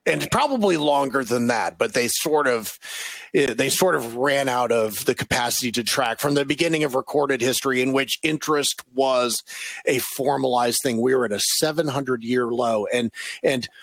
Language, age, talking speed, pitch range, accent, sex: English, 40-59, 180 wpm, 125-180 Hz, American, male